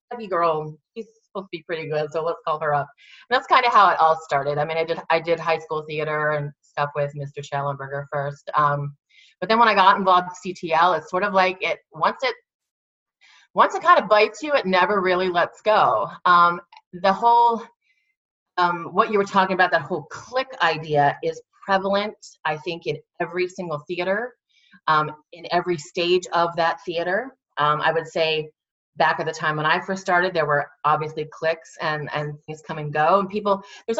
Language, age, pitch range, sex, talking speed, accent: English, 30-49, 155-195 Hz, female, 205 wpm, American